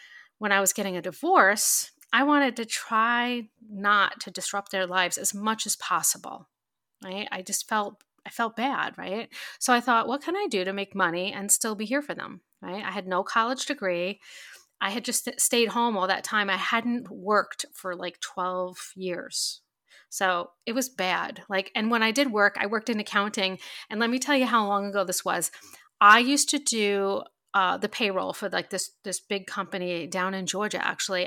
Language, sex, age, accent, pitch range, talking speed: English, female, 30-49, American, 190-235 Hz, 200 wpm